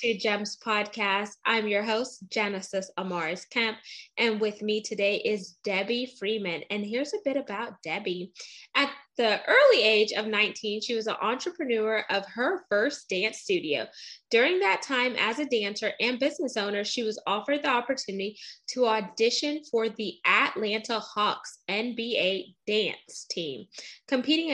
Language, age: English, 10-29